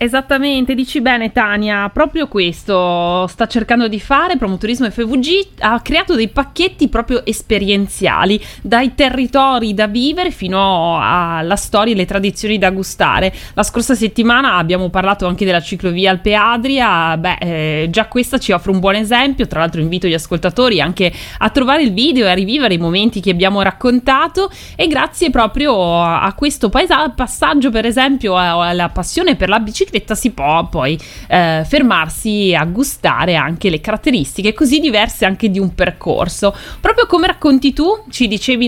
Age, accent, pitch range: 20-39, native, 180-265 Hz